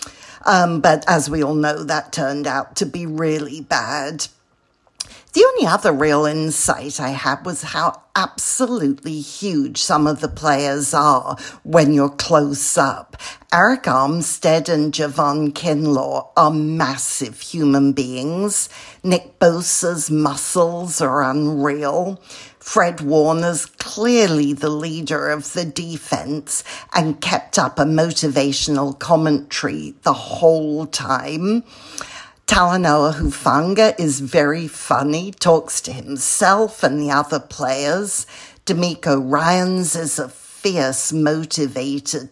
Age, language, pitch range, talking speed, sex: 50-69, English, 145-170 Hz, 115 wpm, female